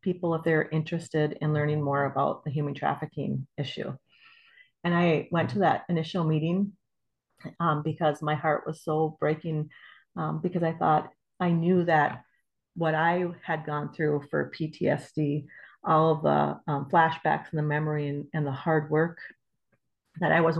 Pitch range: 150-175 Hz